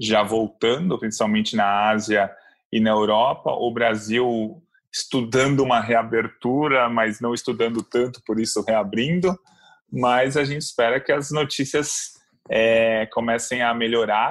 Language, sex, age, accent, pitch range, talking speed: Portuguese, male, 20-39, Brazilian, 115-150 Hz, 125 wpm